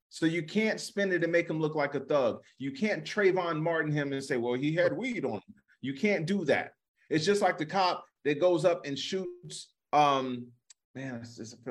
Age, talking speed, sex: 30-49, 220 wpm, male